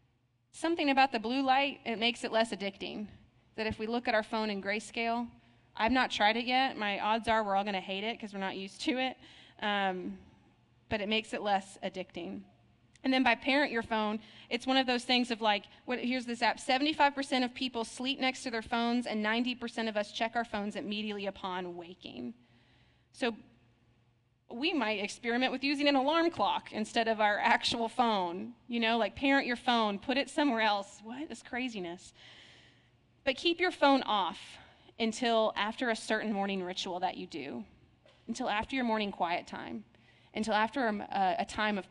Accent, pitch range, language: American, 190-245 Hz, English